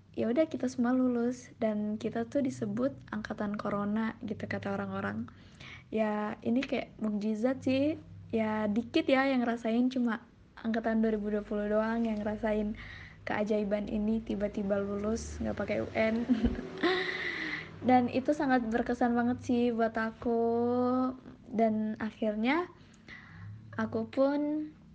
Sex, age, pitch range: female, 20-39, 215-250 Hz